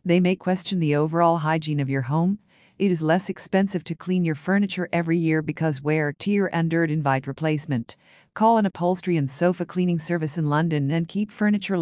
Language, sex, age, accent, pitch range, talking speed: English, female, 50-69, American, 155-180 Hz, 195 wpm